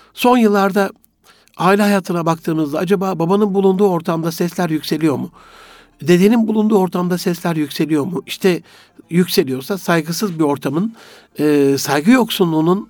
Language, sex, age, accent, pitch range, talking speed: Turkish, male, 60-79, native, 155-195 Hz, 115 wpm